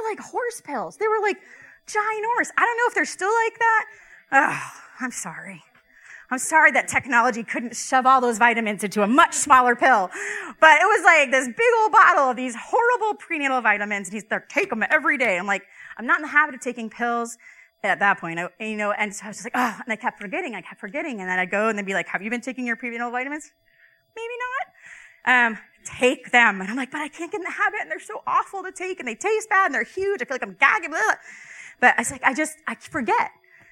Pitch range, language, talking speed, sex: 235-365 Hz, English, 245 wpm, female